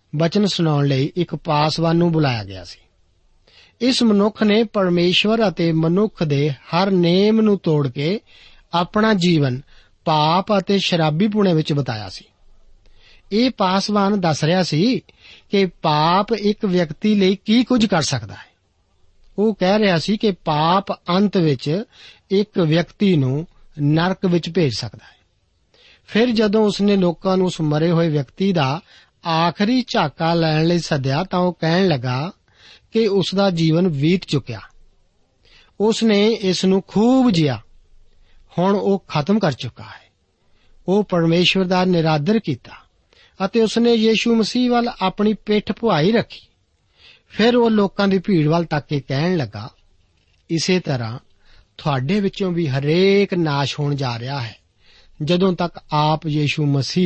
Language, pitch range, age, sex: Punjabi, 140-200 Hz, 50-69, male